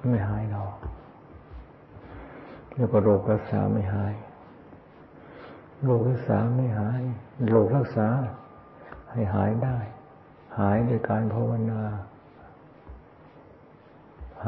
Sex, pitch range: male, 105-120 Hz